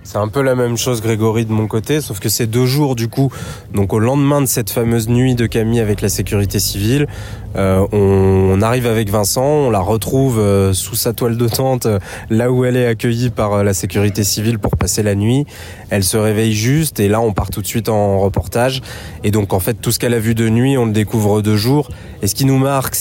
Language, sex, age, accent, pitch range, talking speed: French, male, 20-39, French, 105-125 Hz, 245 wpm